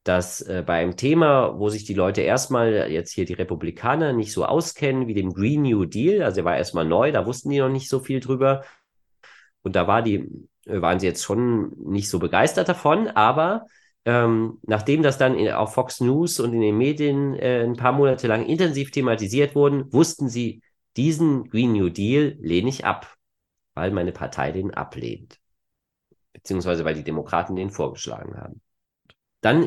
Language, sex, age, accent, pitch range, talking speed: German, male, 30-49, German, 100-140 Hz, 175 wpm